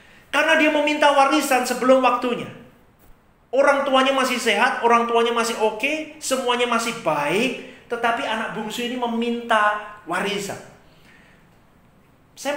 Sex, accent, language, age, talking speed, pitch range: male, native, Indonesian, 40-59, 120 wpm, 200-255 Hz